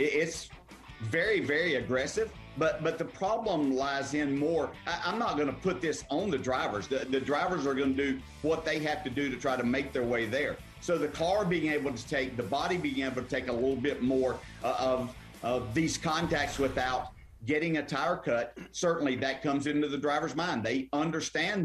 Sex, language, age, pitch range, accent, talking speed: male, English, 50-69, 135-160 Hz, American, 215 wpm